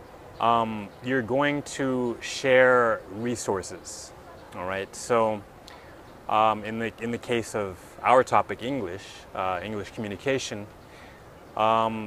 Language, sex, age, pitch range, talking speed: English, male, 20-39, 105-125 Hz, 110 wpm